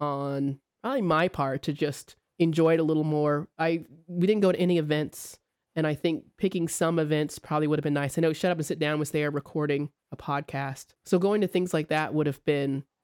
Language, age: English, 20-39